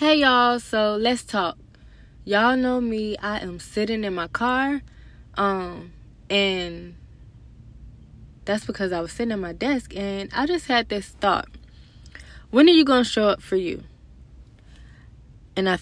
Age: 20-39